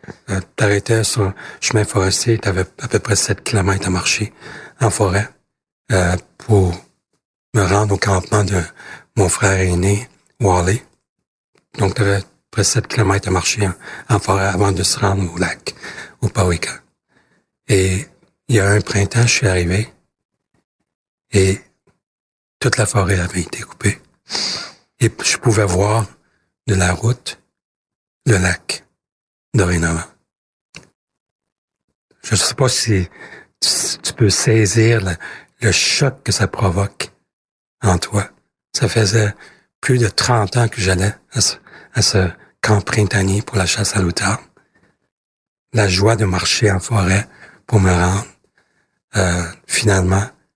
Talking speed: 140 wpm